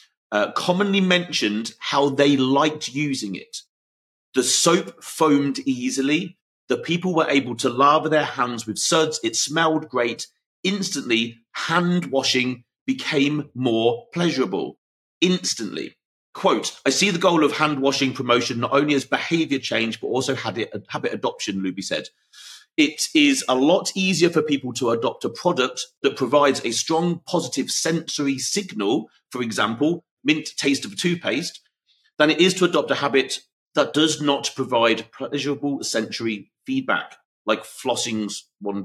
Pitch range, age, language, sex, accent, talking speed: 125-175 Hz, 40-59, English, male, British, 145 wpm